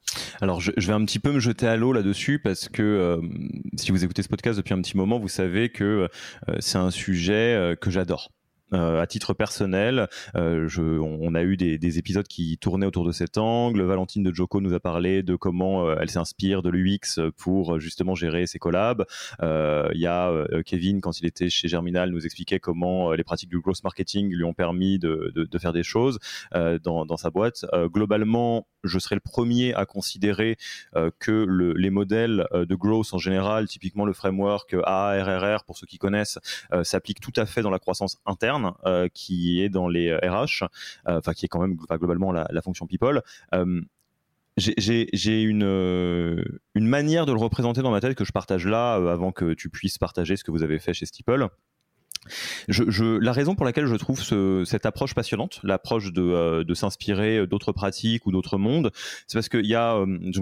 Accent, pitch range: French, 90-110 Hz